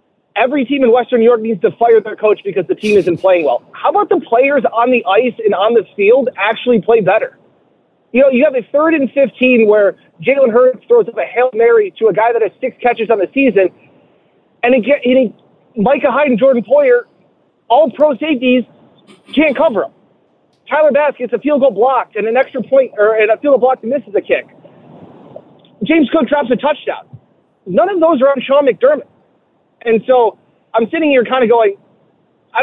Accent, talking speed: American, 210 wpm